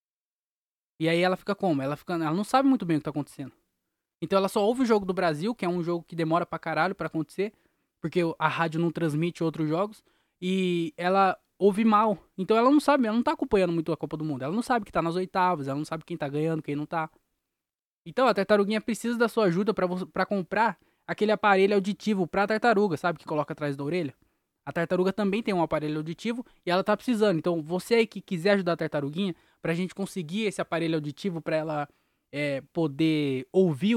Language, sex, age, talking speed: Portuguese, male, 20-39, 215 wpm